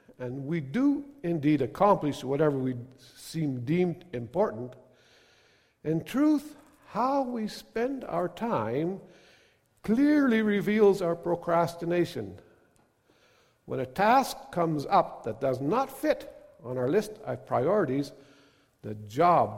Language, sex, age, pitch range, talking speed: English, male, 50-69, 140-200 Hz, 115 wpm